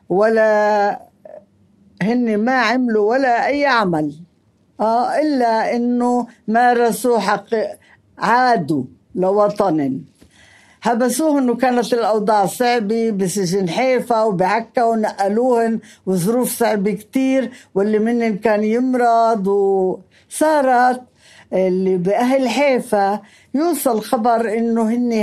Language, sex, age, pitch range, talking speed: Arabic, female, 50-69, 200-245 Hz, 90 wpm